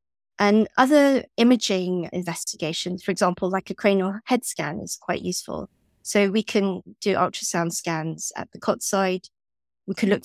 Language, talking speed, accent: English, 160 wpm, British